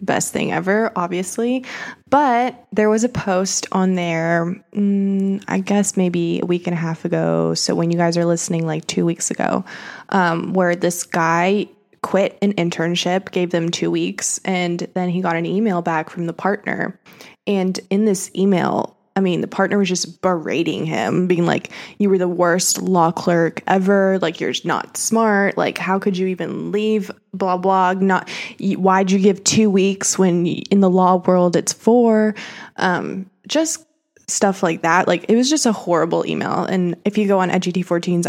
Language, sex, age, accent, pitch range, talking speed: English, female, 20-39, American, 175-205 Hz, 185 wpm